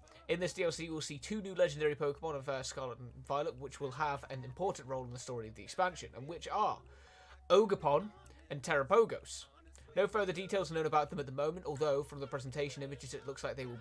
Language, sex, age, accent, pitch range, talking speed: Italian, male, 30-49, British, 120-155 Hz, 225 wpm